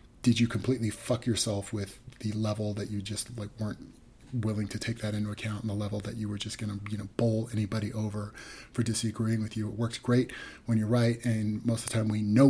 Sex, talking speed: male, 240 wpm